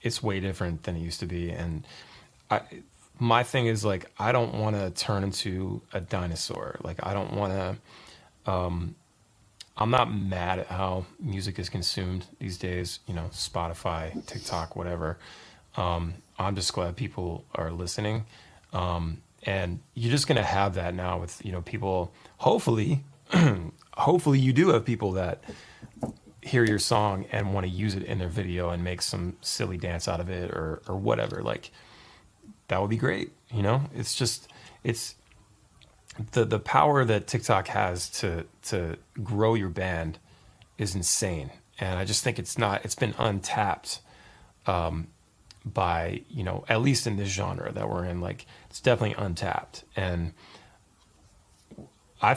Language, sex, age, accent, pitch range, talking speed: English, male, 30-49, American, 90-110 Hz, 160 wpm